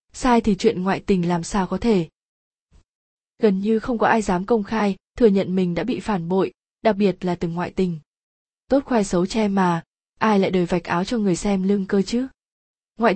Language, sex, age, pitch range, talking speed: Vietnamese, female, 20-39, 180-225 Hz, 215 wpm